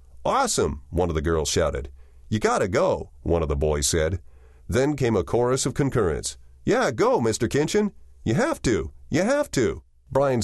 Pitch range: 75-125 Hz